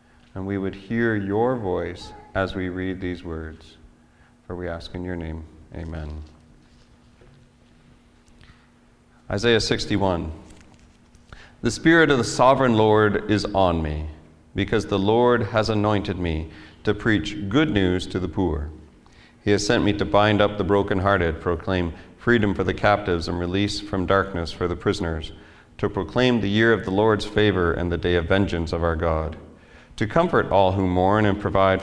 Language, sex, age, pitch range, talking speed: English, male, 40-59, 85-100 Hz, 160 wpm